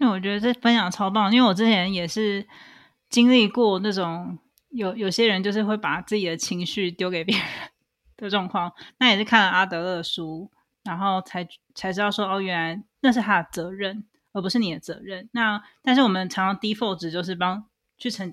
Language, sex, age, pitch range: Chinese, female, 20-39, 185-225 Hz